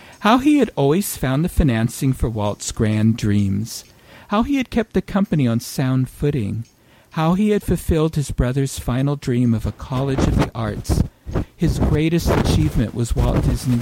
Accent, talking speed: American, 175 wpm